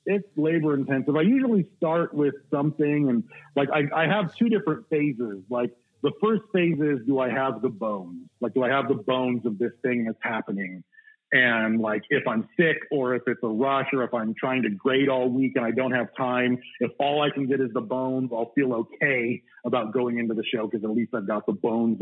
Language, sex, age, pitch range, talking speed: English, male, 40-59, 120-150 Hz, 225 wpm